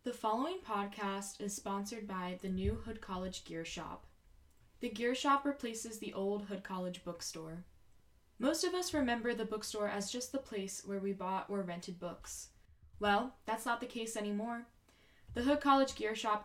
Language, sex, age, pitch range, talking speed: English, female, 10-29, 200-255 Hz, 175 wpm